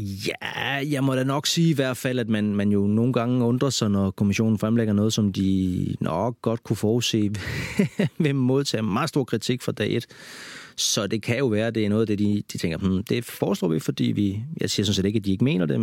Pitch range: 100-120 Hz